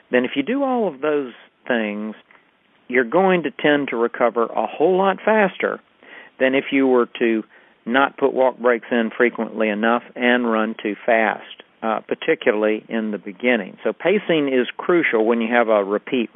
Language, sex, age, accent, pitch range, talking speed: English, male, 50-69, American, 115-135 Hz, 175 wpm